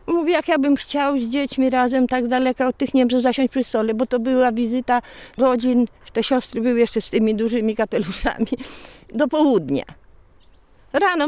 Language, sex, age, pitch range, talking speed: Polish, female, 50-69, 215-275 Hz, 175 wpm